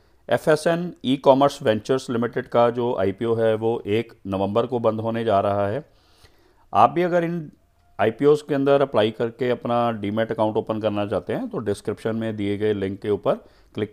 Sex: male